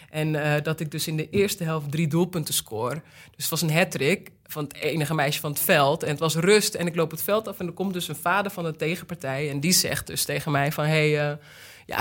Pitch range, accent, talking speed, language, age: 155-195 Hz, Dutch, 270 wpm, English, 20-39